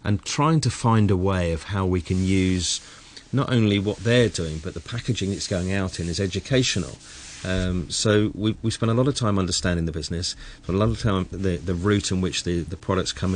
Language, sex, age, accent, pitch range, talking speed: English, male, 40-59, British, 90-120 Hz, 230 wpm